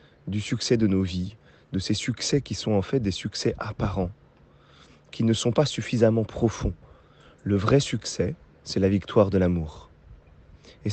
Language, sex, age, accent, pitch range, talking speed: French, male, 30-49, French, 95-115 Hz, 165 wpm